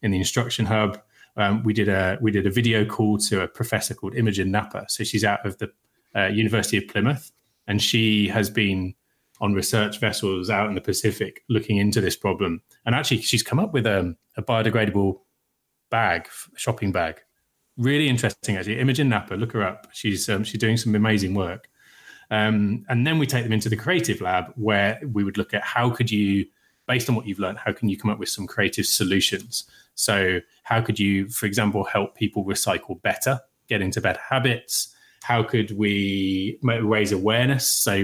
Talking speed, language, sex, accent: 190 wpm, English, male, British